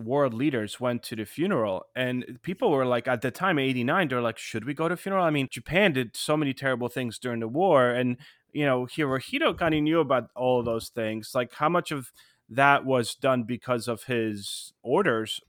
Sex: male